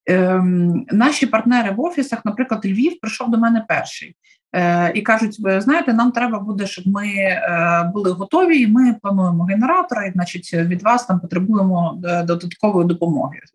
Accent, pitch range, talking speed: native, 175-235 Hz, 155 wpm